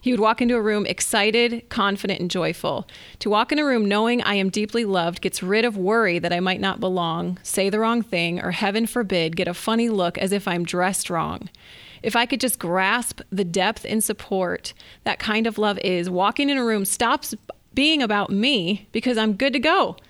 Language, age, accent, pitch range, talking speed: English, 30-49, American, 190-230 Hz, 215 wpm